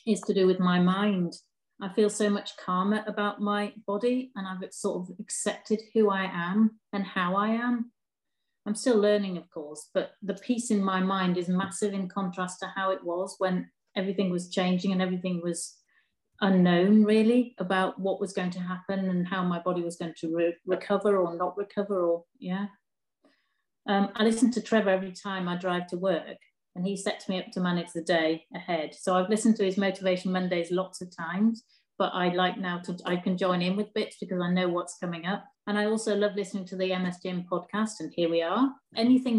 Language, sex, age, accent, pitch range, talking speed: English, female, 40-59, British, 180-210 Hz, 210 wpm